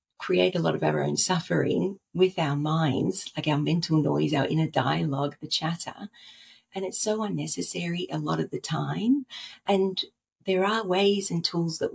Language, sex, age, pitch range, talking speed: English, female, 40-59, 145-180 Hz, 175 wpm